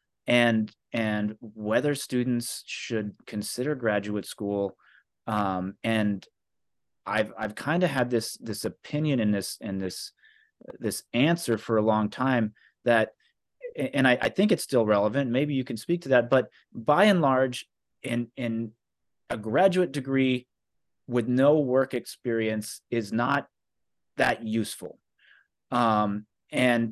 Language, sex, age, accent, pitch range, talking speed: English, male, 30-49, American, 105-130 Hz, 135 wpm